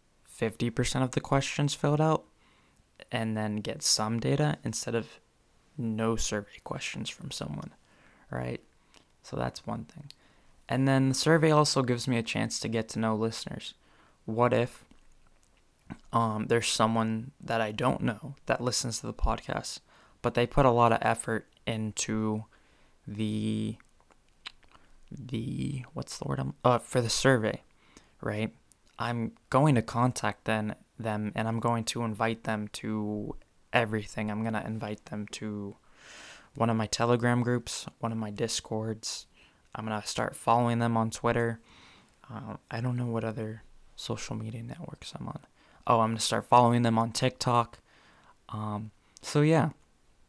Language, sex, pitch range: English, male, 110-125 Hz